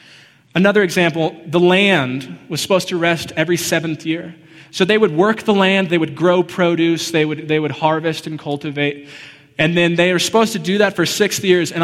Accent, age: American, 20-39